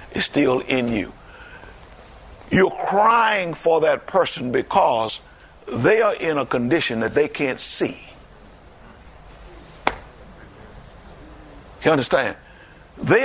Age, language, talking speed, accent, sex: 50-69, English, 100 wpm, American, male